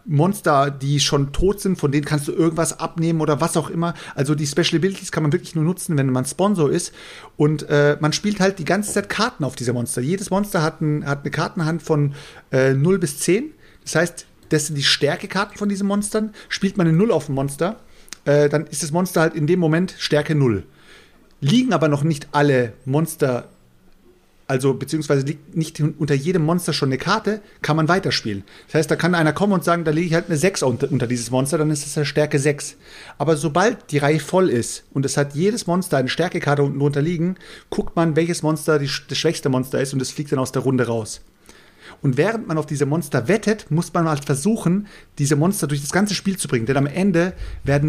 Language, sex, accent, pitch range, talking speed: German, male, German, 145-175 Hz, 225 wpm